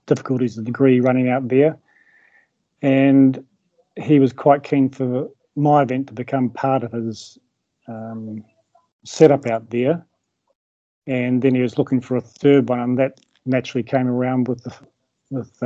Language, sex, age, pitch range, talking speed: English, male, 40-59, 125-145 Hz, 155 wpm